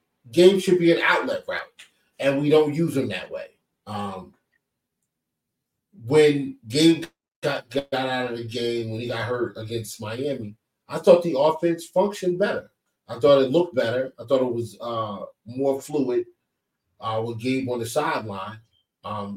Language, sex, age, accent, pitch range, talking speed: English, male, 30-49, American, 120-150 Hz, 165 wpm